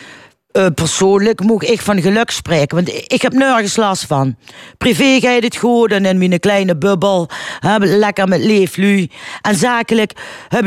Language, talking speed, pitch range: Dutch, 175 wpm, 160-220 Hz